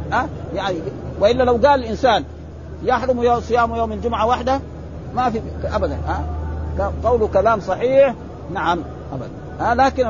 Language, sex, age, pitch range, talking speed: Arabic, male, 50-69, 175-255 Hz, 135 wpm